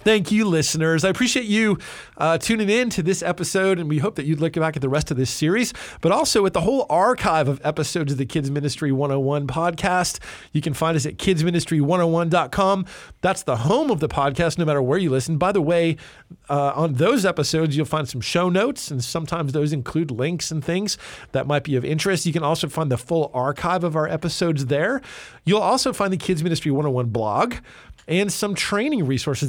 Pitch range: 140-180 Hz